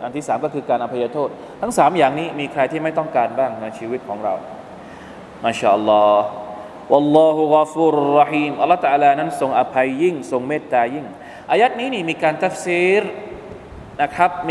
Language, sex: Thai, male